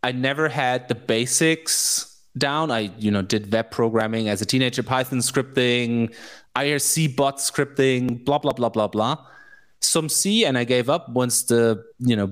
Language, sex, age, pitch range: English, male, 20-39, 110-135 Hz